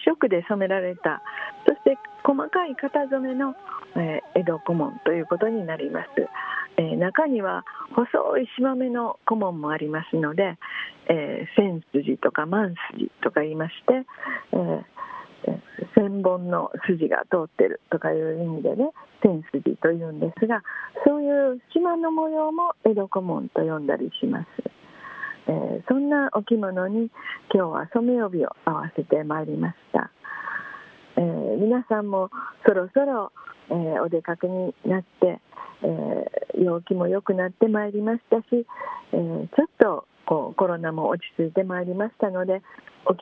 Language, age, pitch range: Japanese, 50-69, 180-260 Hz